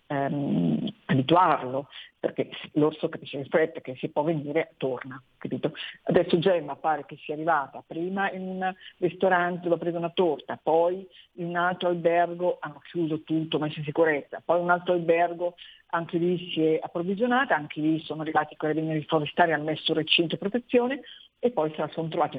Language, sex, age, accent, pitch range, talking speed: Italian, female, 50-69, native, 150-175 Hz, 180 wpm